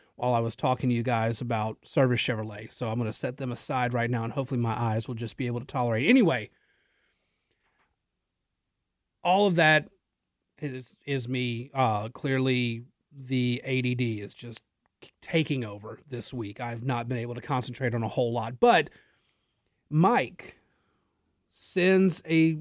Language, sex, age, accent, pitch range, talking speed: English, male, 30-49, American, 120-170 Hz, 160 wpm